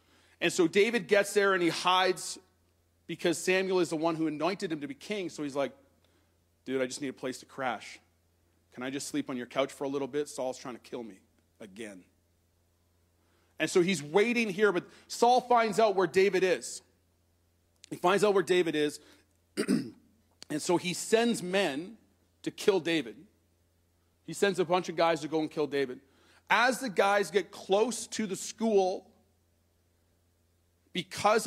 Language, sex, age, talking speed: English, male, 40-59, 175 wpm